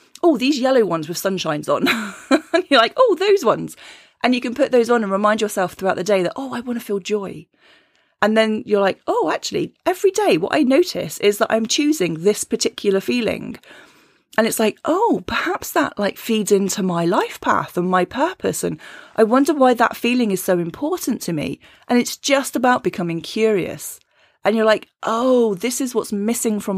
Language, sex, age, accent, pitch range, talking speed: English, female, 30-49, British, 195-255 Hz, 205 wpm